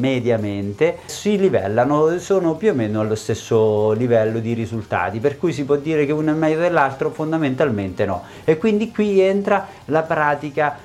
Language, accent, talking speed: Italian, native, 165 wpm